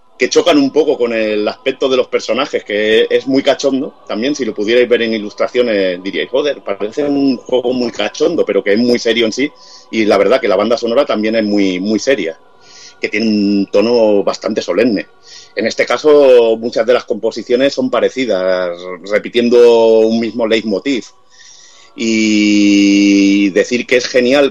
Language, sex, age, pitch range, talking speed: Spanish, male, 30-49, 110-135 Hz, 175 wpm